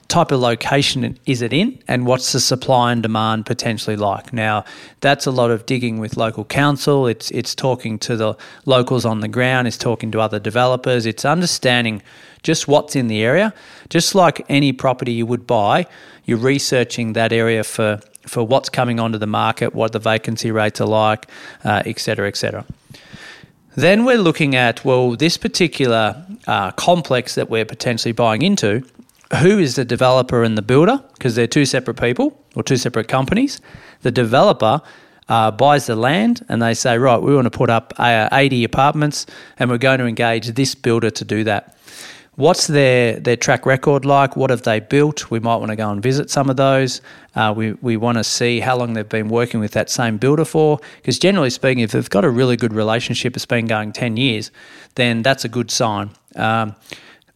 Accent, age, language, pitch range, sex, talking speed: Australian, 40-59, English, 115-135 Hz, male, 195 wpm